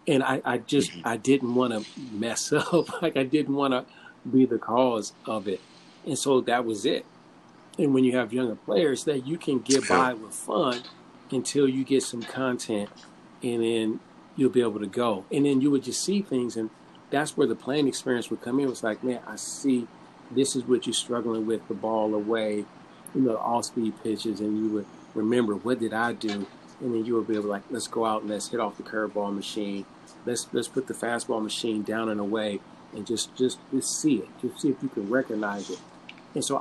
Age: 40-59